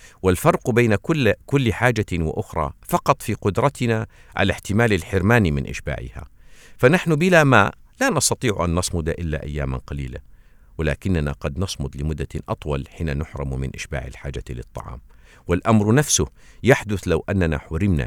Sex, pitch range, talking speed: male, 80-115 Hz, 135 wpm